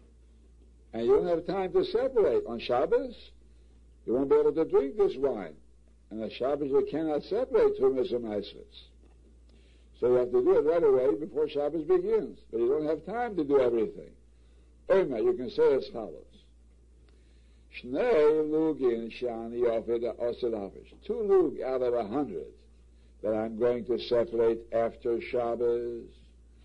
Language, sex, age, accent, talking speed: English, male, 60-79, American, 140 wpm